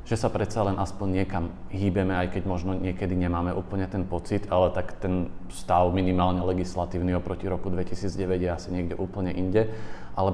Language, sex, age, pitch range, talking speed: Slovak, male, 40-59, 90-100 Hz, 175 wpm